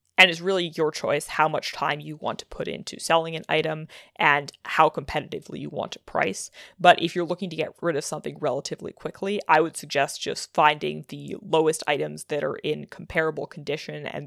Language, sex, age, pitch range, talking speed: English, female, 20-39, 150-170 Hz, 200 wpm